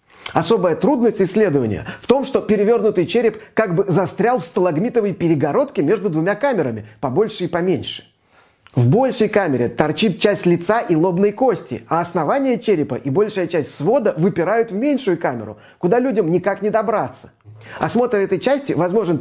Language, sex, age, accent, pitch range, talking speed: Russian, male, 30-49, native, 160-215 Hz, 155 wpm